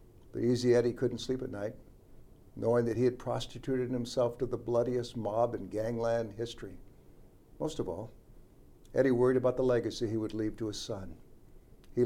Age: 60-79